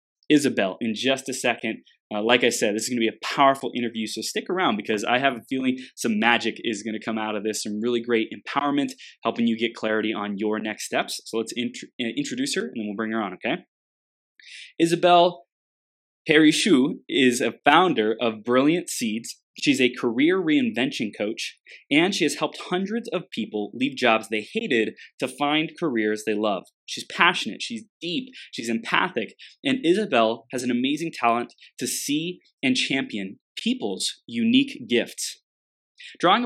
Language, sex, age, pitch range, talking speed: English, male, 20-39, 115-175 Hz, 175 wpm